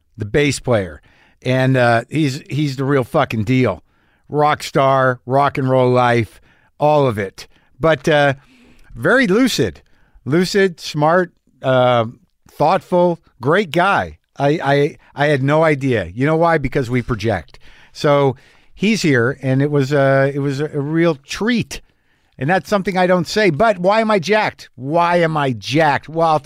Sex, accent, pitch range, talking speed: male, American, 125-165 Hz, 160 wpm